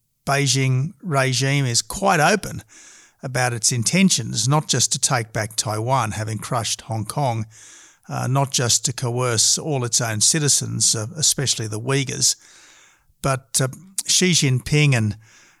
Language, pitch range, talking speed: English, 115-145 Hz, 140 wpm